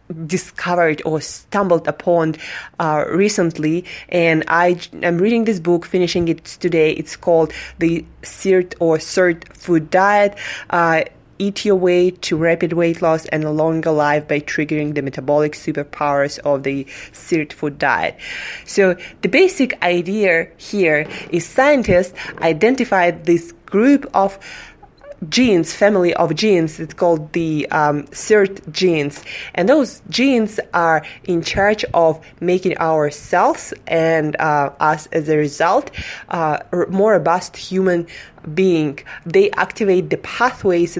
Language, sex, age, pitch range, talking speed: English, female, 20-39, 155-185 Hz, 135 wpm